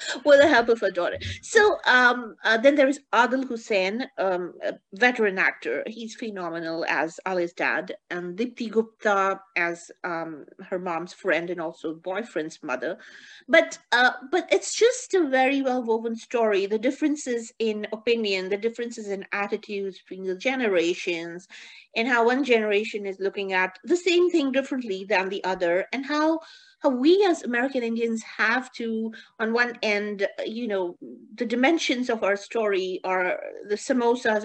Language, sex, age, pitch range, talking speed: English, female, 50-69, 195-255 Hz, 160 wpm